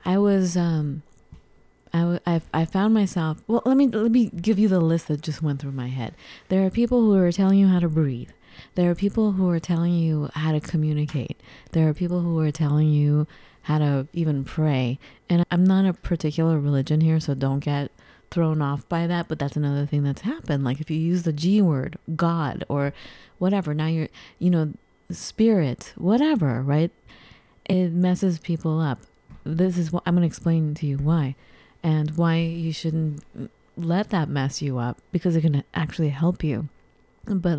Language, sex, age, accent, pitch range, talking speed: English, female, 30-49, American, 150-185 Hz, 190 wpm